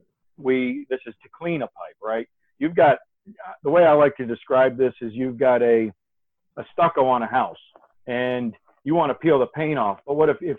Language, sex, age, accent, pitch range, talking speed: English, male, 50-69, American, 110-135 Hz, 215 wpm